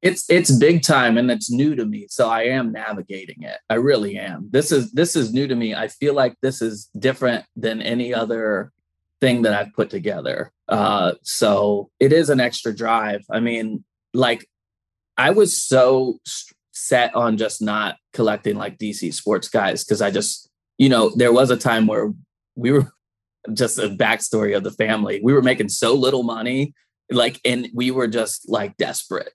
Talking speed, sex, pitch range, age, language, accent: 190 wpm, male, 110-130 Hz, 20-39, English, American